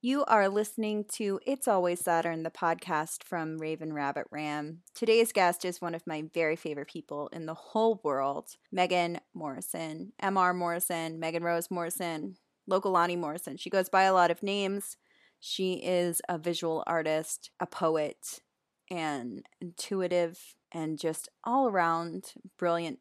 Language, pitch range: English, 165-200 Hz